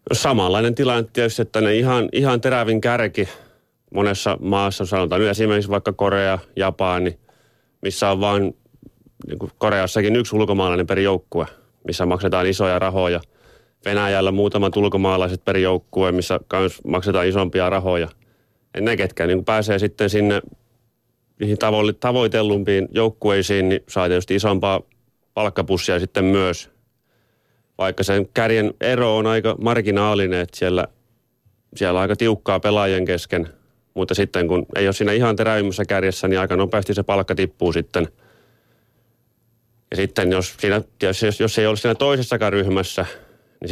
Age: 30-49